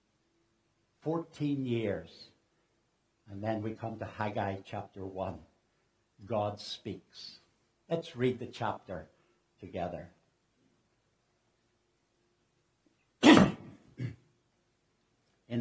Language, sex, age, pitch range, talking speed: English, male, 60-79, 110-145 Hz, 70 wpm